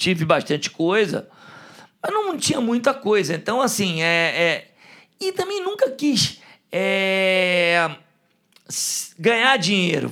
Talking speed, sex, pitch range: 115 wpm, male, 180-230 Hz